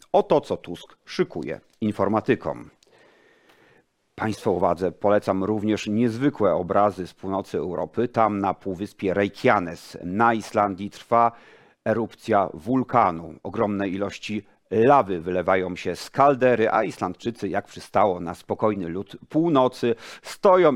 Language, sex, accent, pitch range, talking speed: Polish, male, native, 95-120 Hz, 115 wpm